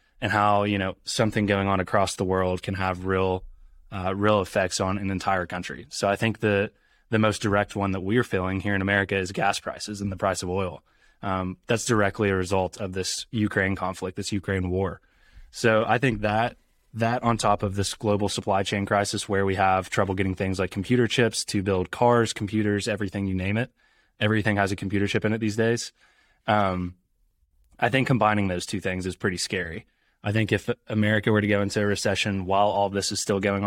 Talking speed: 215 wpm